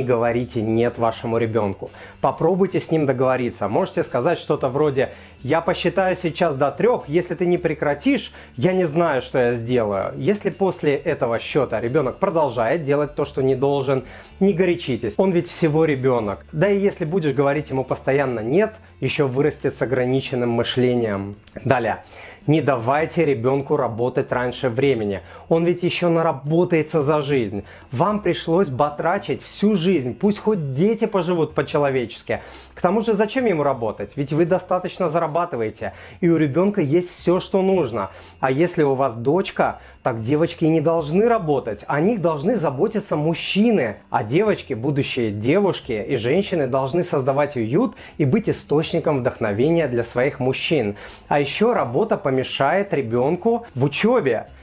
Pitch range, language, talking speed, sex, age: 125-175 Hz, Russian, 150 wpm, male, 30-49